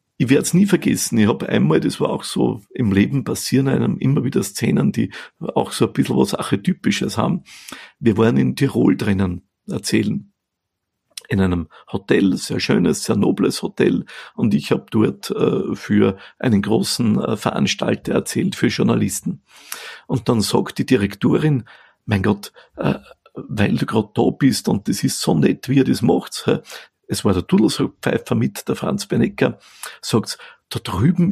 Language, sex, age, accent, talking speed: German, male, 50-69, Austrian, 160 wpm